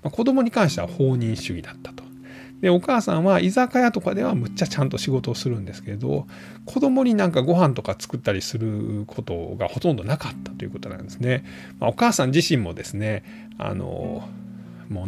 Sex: male